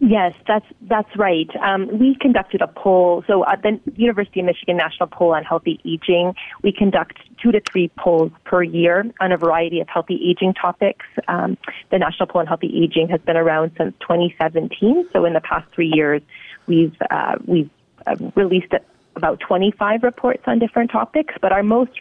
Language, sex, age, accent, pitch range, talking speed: English, female, 30-49, American, 160-195 Hz, 185 wpm